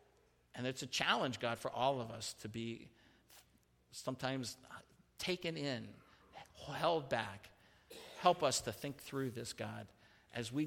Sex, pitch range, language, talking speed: male, 90-120 Hz, English, 140 wpm